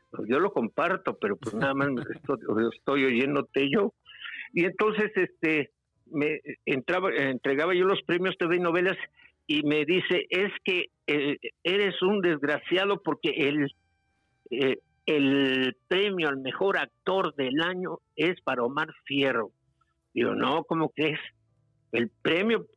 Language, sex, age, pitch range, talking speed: Spanish, male, 60-79, 130-185 Hz, 135 wpm